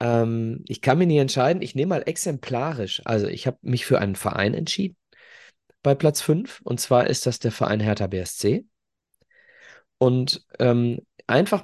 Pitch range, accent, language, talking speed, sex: 100-125 Hz, German, German, 160 wpm, male